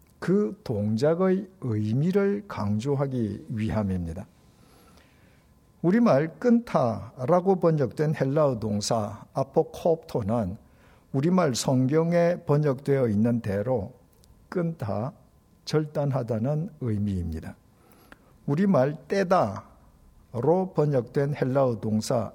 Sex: male